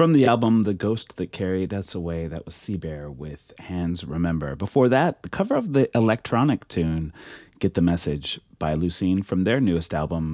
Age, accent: 30-49, American